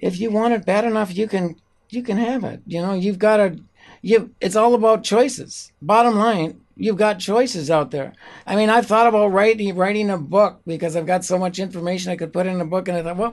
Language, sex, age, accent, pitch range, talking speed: English, male, 60-79, American, 170-205 Hz, 240 wpm